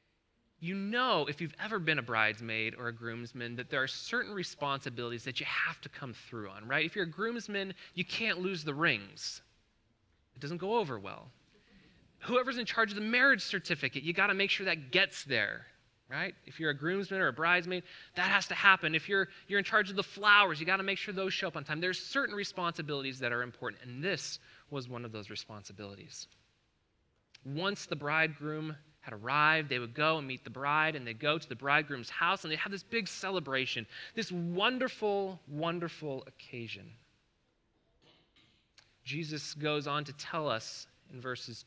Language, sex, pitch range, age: English, male, 120-180 Hz, 20-39